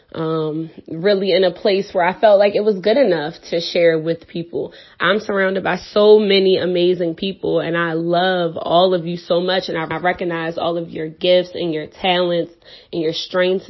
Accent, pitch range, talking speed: American, 170-190 Hz, 195 wpm